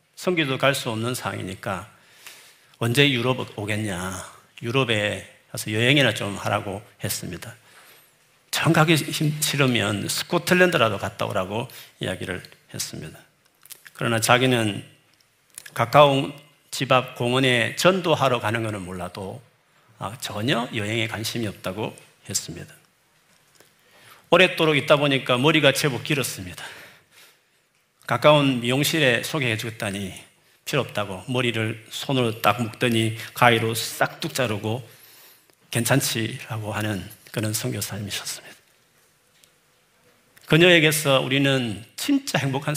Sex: male